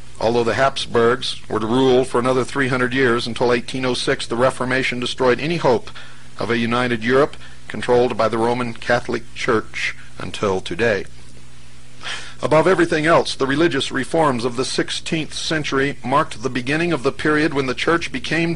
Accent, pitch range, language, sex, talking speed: American, 115-135 Hz, English, male, 160 wpm